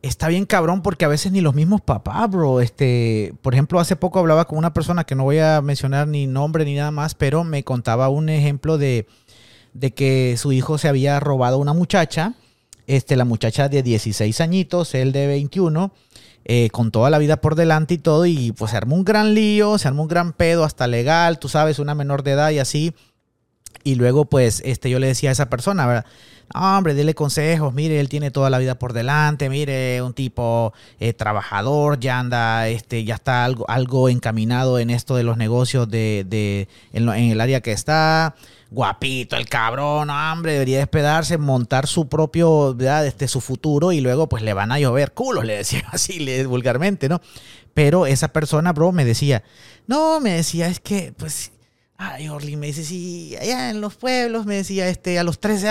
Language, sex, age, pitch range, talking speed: Spanish, male, 30-49, 125-160 Hz, 200 wpm